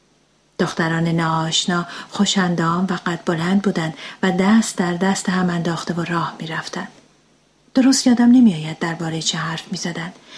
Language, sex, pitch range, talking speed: Persian, female, 165-220 Hz, 135 wpm